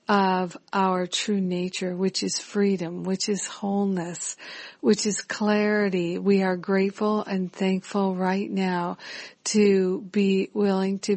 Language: English